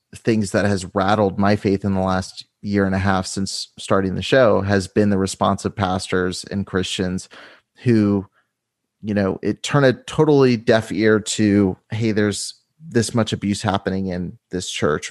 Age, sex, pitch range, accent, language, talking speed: 30-49, male, 95-110 Hz, American, English, 175 wpm